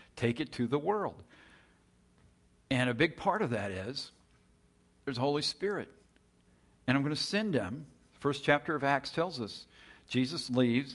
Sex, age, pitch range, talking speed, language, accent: male, 50-69, 100-145 Hz, 170 wpm, English, American